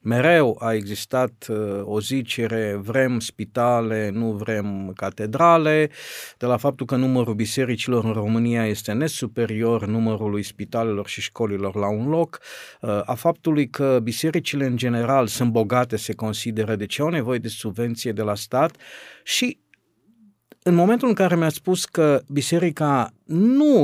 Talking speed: 140 wpm